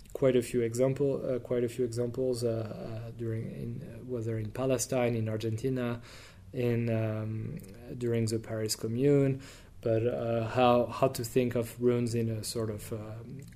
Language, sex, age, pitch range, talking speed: English, male, 20-39, 115-130 Hz, 170 wpm